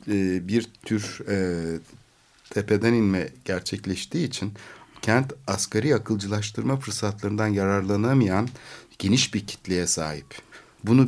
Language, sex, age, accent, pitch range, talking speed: Turkish, male, 60-79, native, 90-115 Hz, 85 wpm